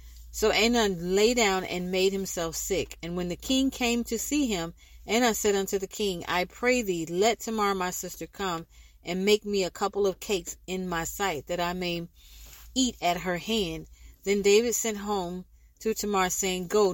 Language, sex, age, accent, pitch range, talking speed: English, female, 40-59, American, 175-215 Hz, 190 wpm